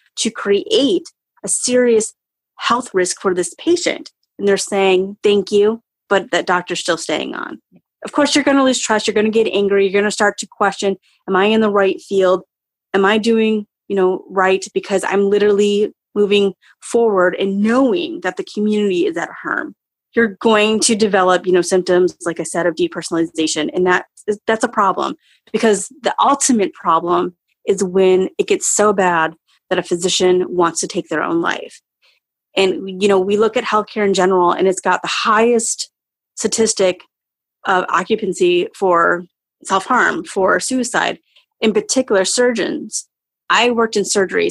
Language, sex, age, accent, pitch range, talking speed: English, female, 30-49, American, 180-220 Hz, 170 wpm